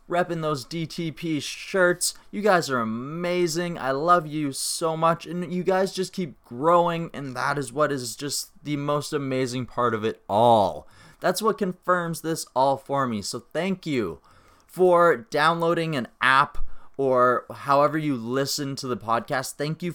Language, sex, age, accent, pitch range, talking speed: English, male, 20-39, American, 125-170 Hz, 165 wpm